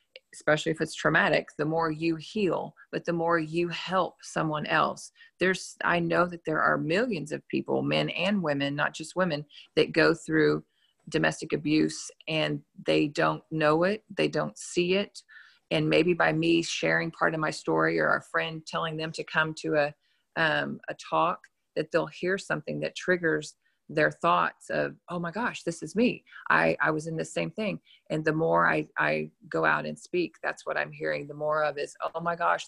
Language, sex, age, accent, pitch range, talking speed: English, female, 40-59, American, 140-170 Hz, 195 wpm